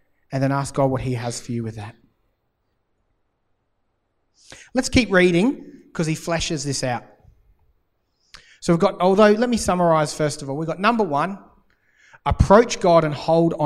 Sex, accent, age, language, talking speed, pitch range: male, Australian, 30-49, English, 165 wpm, 130-185 Hz